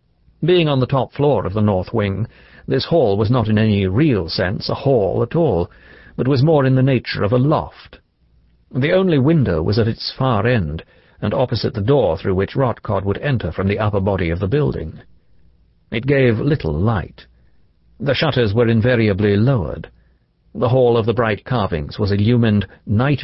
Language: English